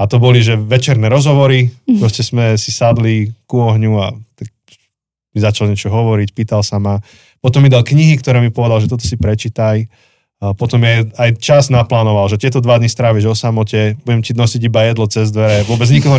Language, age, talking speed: Slovak, 20-39, 200 wpm